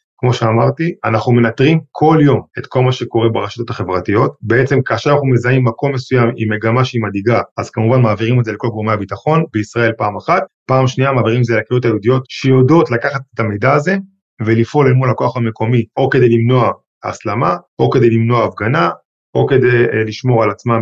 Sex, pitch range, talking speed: male, 115-135 Hz, 180 wpm